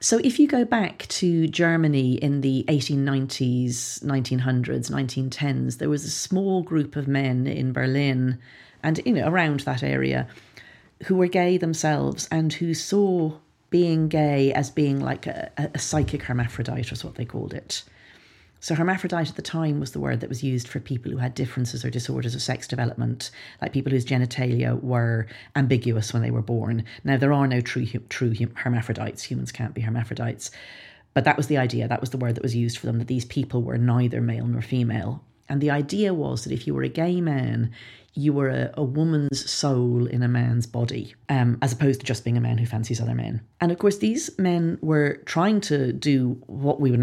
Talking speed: 205 wpm